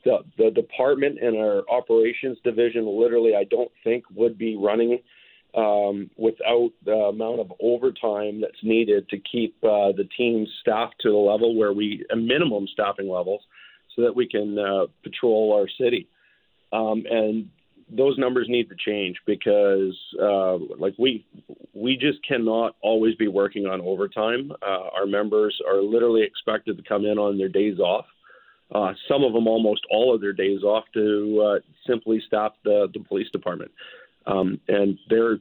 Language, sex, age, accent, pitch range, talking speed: English, male, 40-59, American, 105-145 Hz, 165 wpm